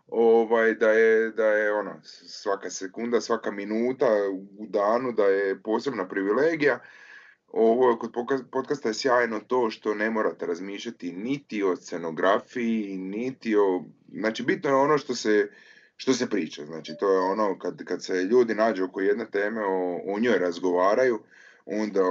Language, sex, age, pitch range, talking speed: Croatian, male, 30-49, 100-125 Hz, 160 wpm